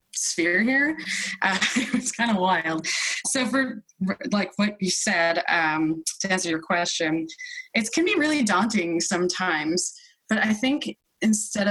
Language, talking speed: English, 145 wpm